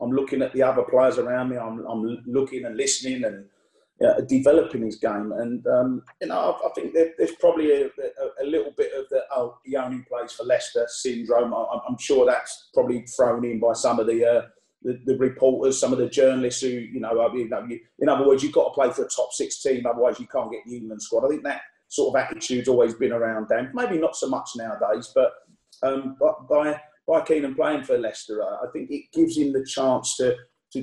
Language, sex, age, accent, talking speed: English, male, 30-49, British, 230 wpm